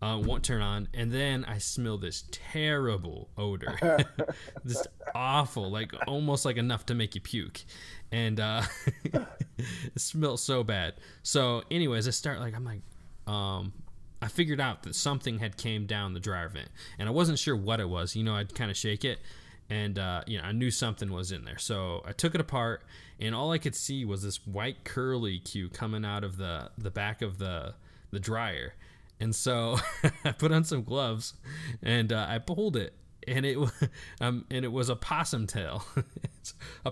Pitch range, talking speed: 100-125 Hz, 190 wpm